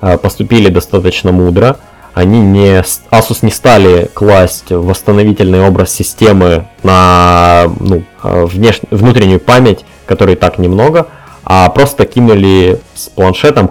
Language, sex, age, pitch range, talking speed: Russian, male, 20-39, 90-105 Hz, 95 wpm